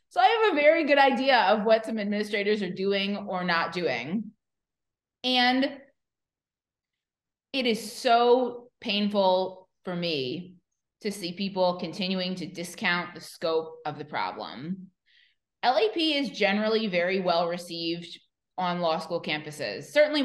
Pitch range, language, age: 175-225 Hz, English, 20-39